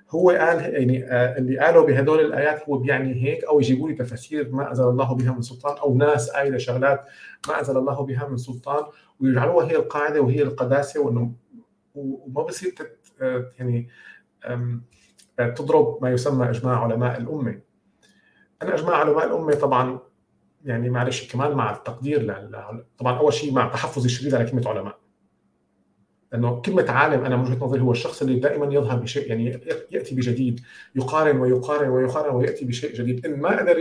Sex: male